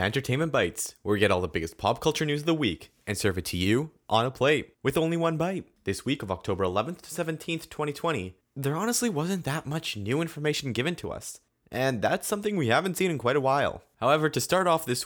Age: 20-39